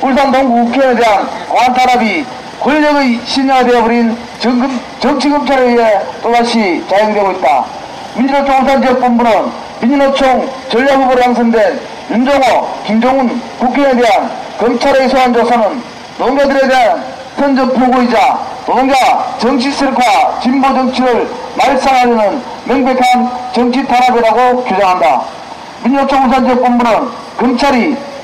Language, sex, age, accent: Korean, male, 40-59, native